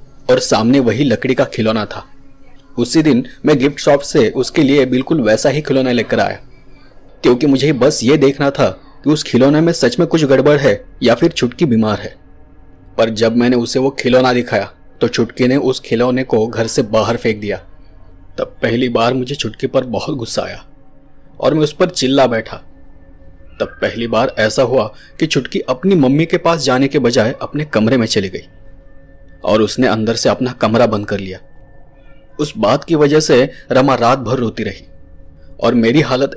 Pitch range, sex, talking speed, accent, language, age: 110-140 Hz, male, 130 wpm, native, Hindi, 30-49